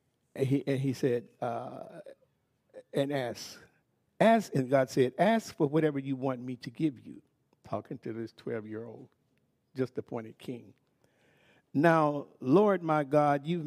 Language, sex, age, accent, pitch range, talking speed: English, male, 60-79, American, 135-175 Hz, 140 wpm